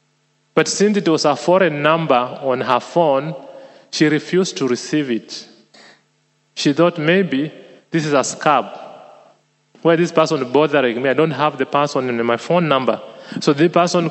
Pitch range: 130-160 Hz